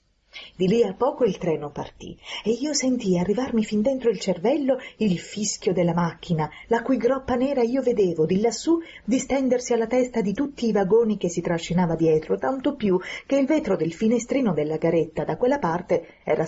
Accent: native